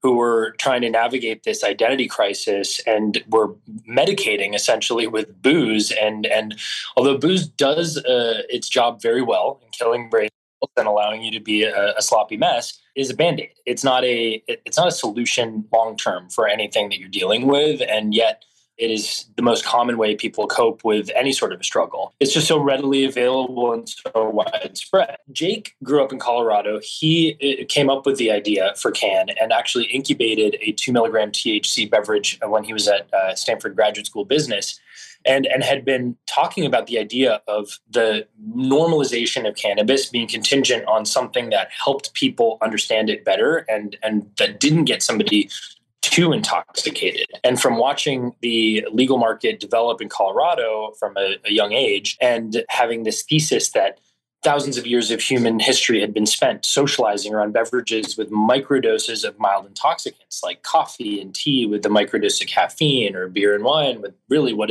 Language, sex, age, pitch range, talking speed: English, male, 20-39, 110-150 Hz, 175 wpm